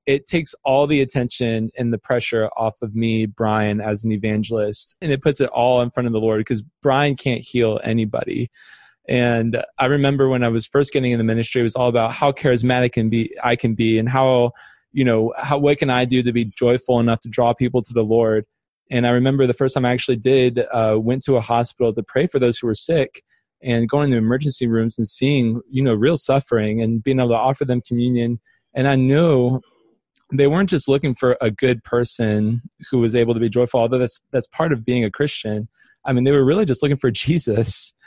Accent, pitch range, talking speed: American, 115-130 Hz, 225 wpm